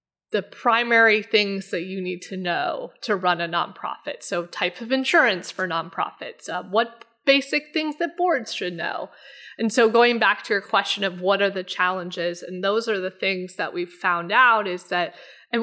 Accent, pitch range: American, 185-225 Hz